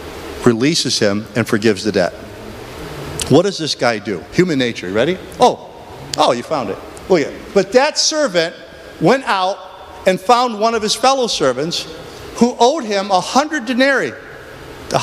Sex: male